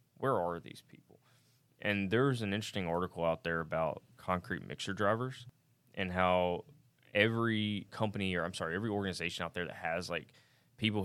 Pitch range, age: 90-115 Hz, 20-39